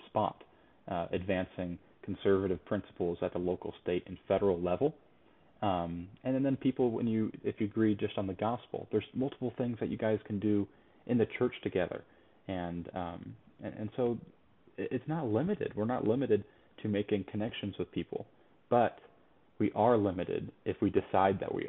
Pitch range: 95-115 Hz